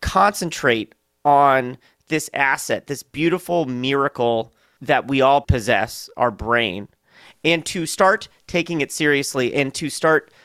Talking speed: 125 wpm